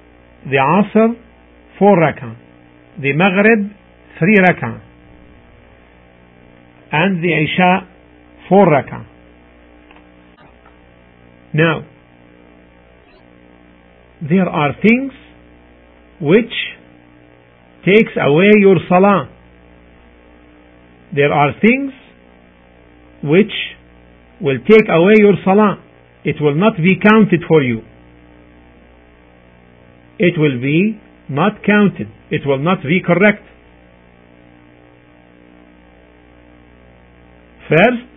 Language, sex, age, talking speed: English, male, 50-69, 75 wpm